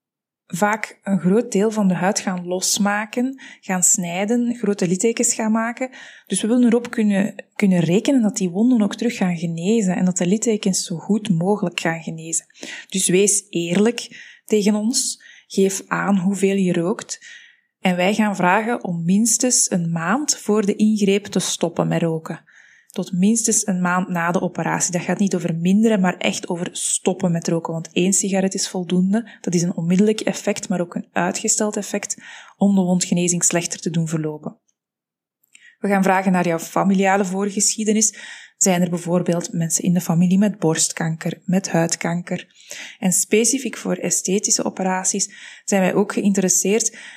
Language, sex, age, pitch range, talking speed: Dutch, female, 20-39, 180-215 Hz, 165 wpm